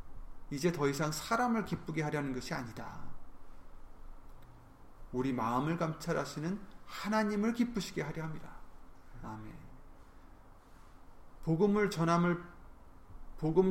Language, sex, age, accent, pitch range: Korean, male, 30-49, native, 115-155 Hz